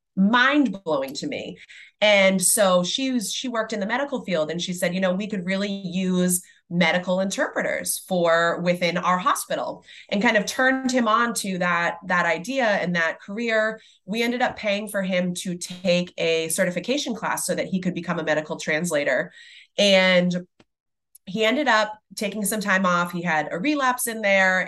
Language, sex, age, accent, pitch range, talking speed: English, female, 20-39, American, 175-220 Hz, 180 wpm